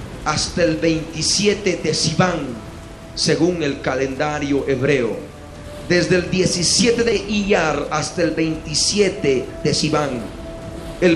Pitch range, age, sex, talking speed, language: 140-195 Hz, 40-59, male, 110 wpm, Spanish